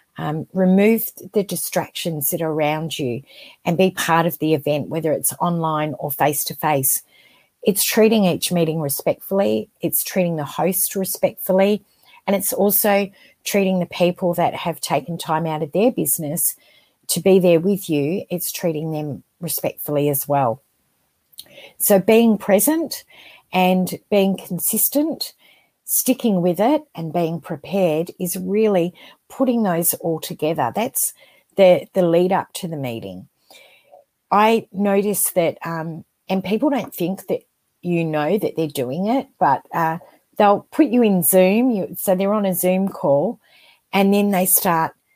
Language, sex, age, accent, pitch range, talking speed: English, female, 40-59, Australian, 160-200 Hz, 155 wpm